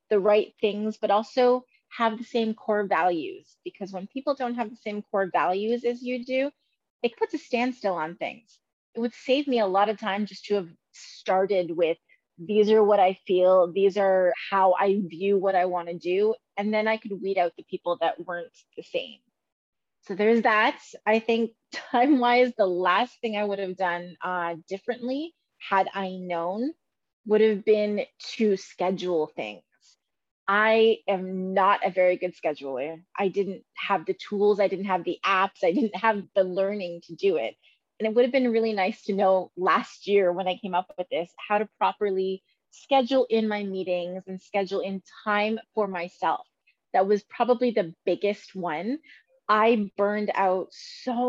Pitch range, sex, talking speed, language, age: 185-225 Hz, female, 180 wpm, English, 30-49